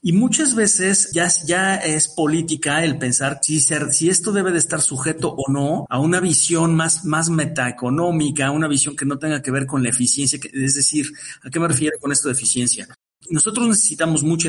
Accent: Mexican